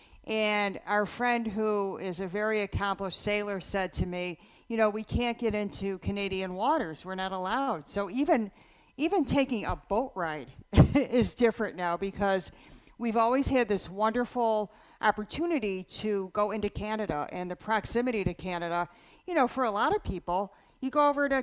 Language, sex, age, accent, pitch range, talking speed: English, female, 50-69, American, 190-245 Hz, 170 wpm